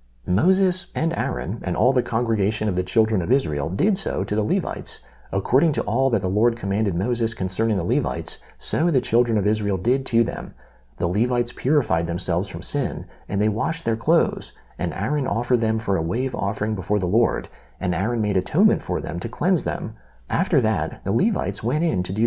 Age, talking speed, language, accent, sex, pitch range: 40-59, 200 wpm, English, American, male, 90-120 Hz